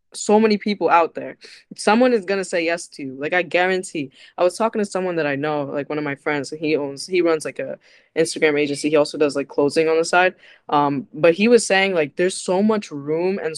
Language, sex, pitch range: English, female, 150-185 Hz